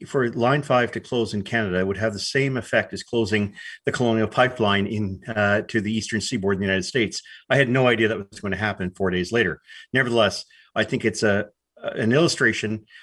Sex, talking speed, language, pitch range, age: male, 205 wpm, English, 100-120 Hz, 50-69